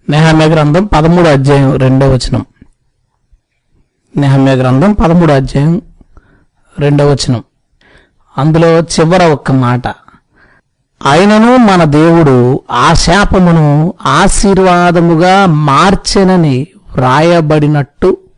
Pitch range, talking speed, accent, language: 135-175 Hz, 70 wpm, native, Telugu